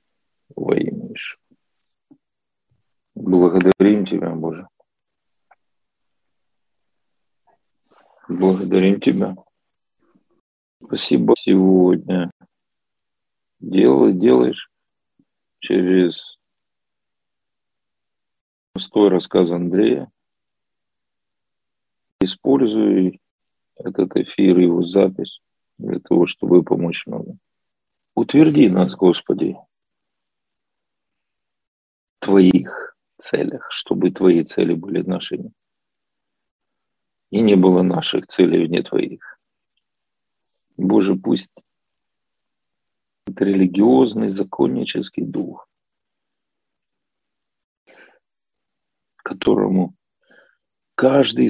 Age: 40-59